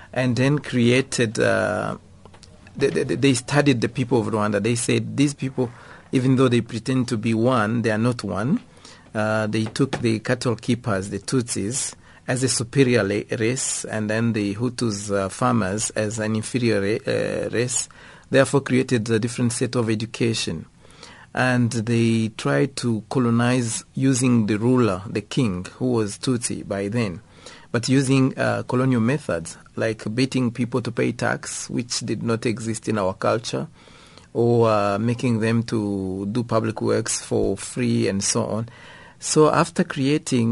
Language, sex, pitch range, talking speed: English, male, 110-125 Hz, 155 wpm